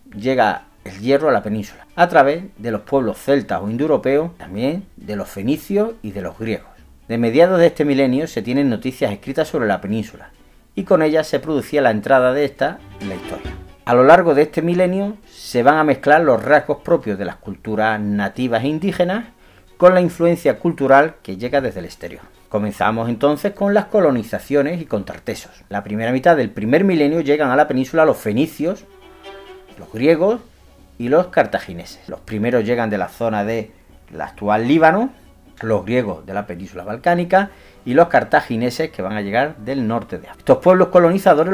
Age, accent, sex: 40-59, Spanish, male